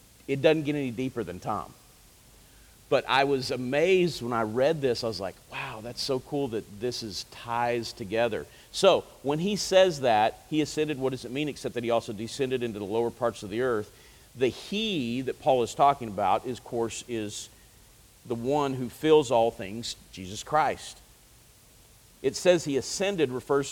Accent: American